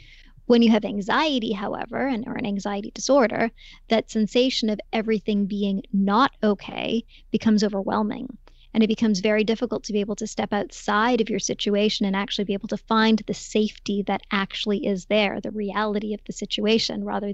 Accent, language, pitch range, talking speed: American, English, 205-225 Hz, 175 wpm